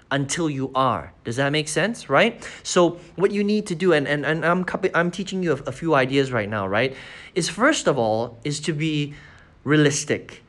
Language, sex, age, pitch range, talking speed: English, male, 20-39, 135-195 Hz, 205 wpm